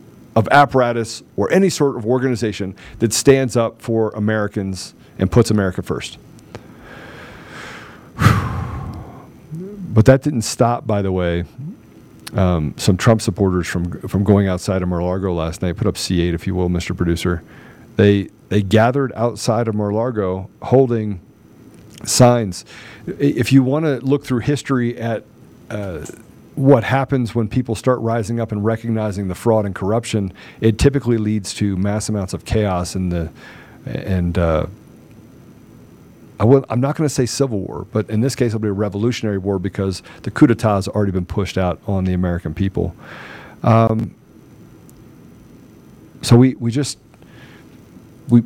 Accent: American